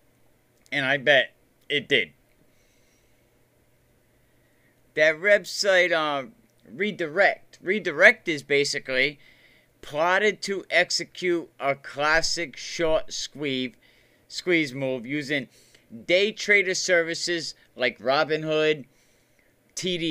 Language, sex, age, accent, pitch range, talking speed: English, male, 40-59, American, 135-185 Hz, 85 wpm